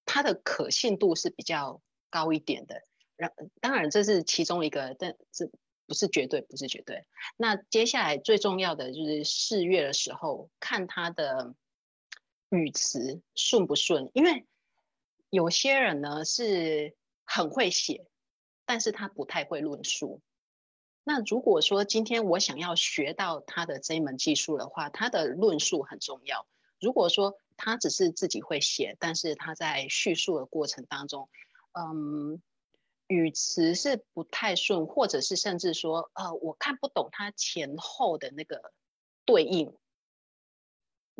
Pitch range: 160-220 Hz